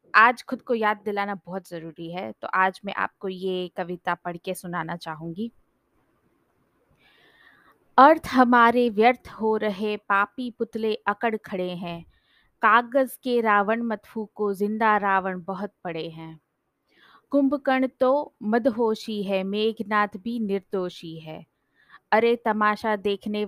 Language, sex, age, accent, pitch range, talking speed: Hindi, female, 20-39, native, 190-230 Hz, 125 wpm